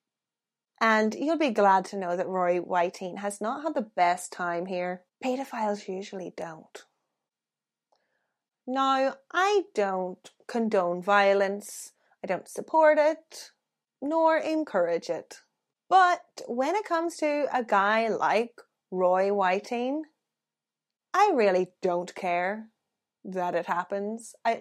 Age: 30-49